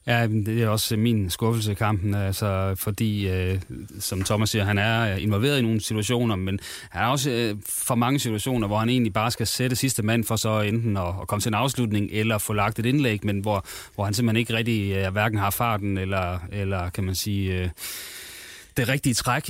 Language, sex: Danish, male